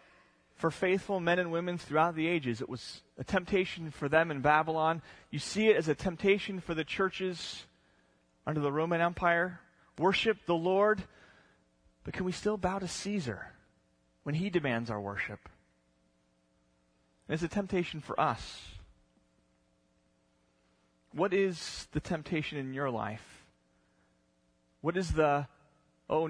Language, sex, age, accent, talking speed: English, male, 30-49, American, 135 wpm